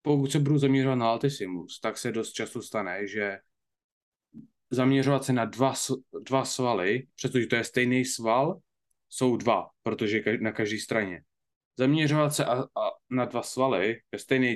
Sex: male